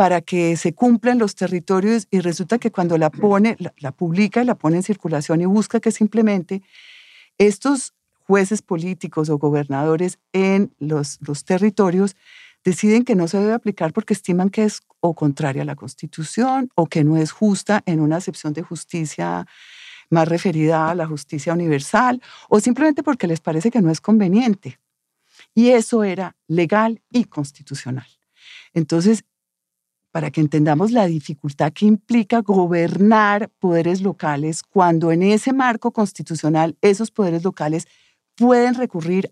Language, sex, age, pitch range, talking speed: English, female, 40-59, 160-215 Hz, 155 wpm